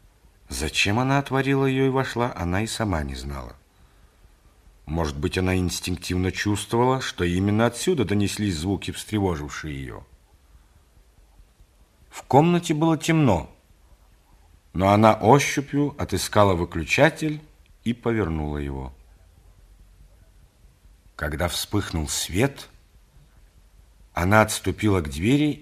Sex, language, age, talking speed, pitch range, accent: male, Russian, 50-69, 100 wpm, 80-120 Hz, native